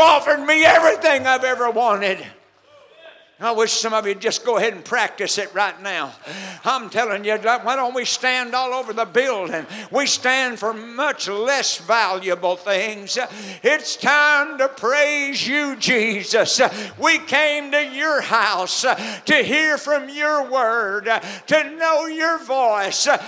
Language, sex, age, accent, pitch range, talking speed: English, male, 60-79, American, 230-315 Hz, 145 wpm